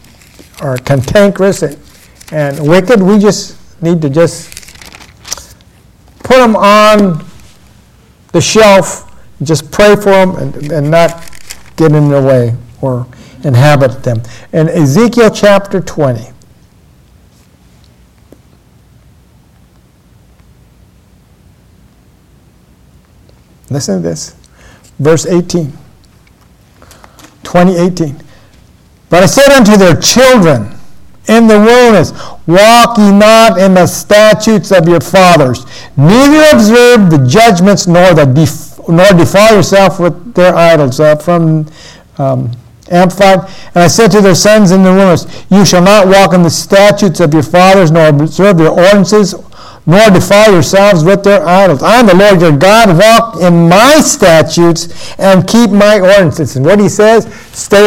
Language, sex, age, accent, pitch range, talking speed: English, male, 60-79, American, 145-200 Hz, 125 wpm